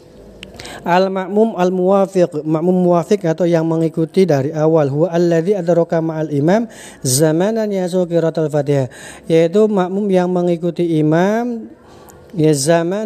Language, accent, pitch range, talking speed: Indonesian, native, 155-190 Hz, 105 wpm